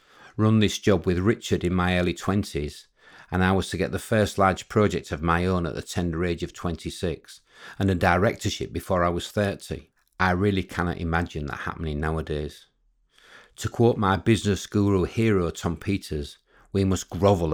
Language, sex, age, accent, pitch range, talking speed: English, male, 50-69, British, 80-100 Hz, 180 wpm